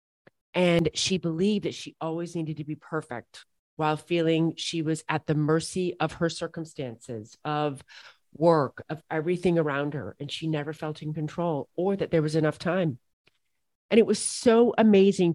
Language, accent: English, American